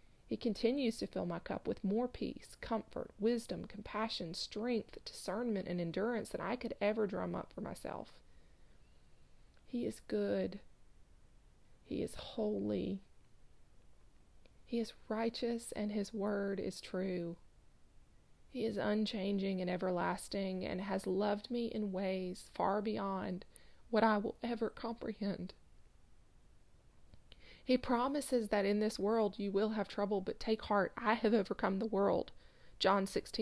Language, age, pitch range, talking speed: English, 30-49, 185-220 Hz, 135 wpm